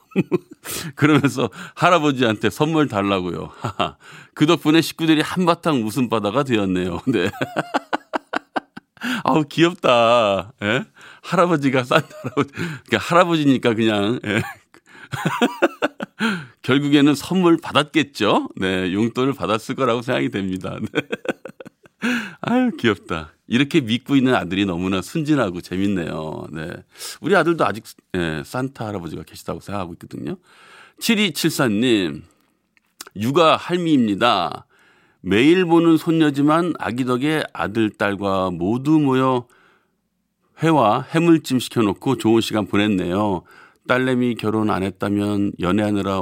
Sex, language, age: male, Korean, 40-59